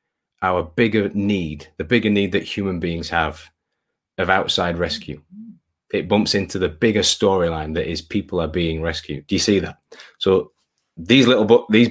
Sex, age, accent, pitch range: male, 30-49, British, 85-105 Hz